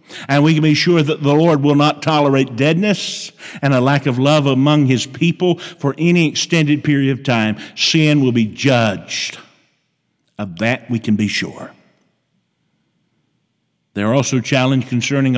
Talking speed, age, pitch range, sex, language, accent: 155 wpm, 50-69, 140-200 Hz, male, English, American